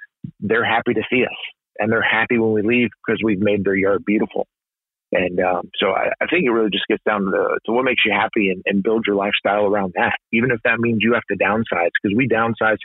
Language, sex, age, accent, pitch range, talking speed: English, male, 30-49, American, 100-115 Hz, 250 wpm